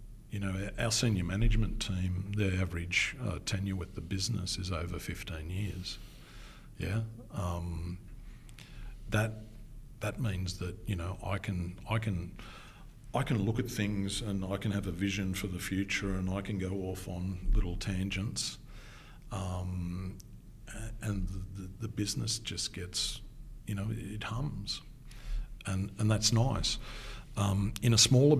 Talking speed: 150 wpm